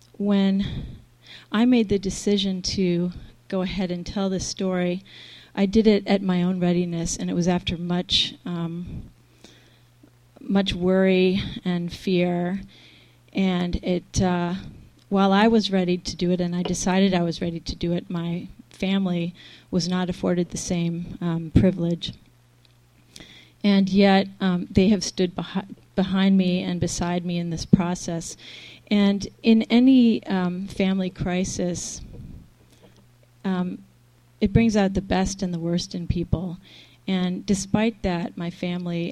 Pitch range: 170-195 Hz